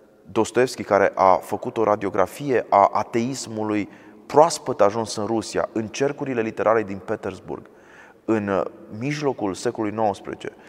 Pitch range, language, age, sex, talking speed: 105-125 Hz, Romanian, 30-49, male, 120 wpm